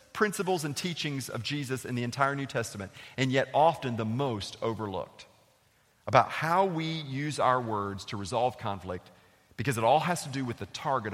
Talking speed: 185 wpm